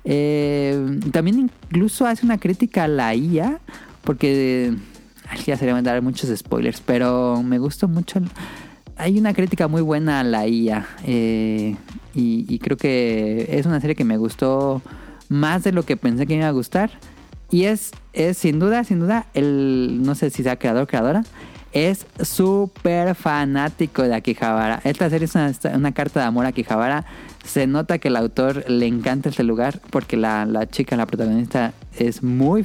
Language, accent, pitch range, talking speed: Spanish, Mexican, 120-160 Hz, 185 wpm